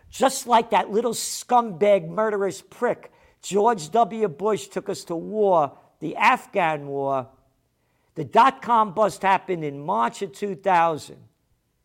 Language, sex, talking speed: English, male, 125 wpm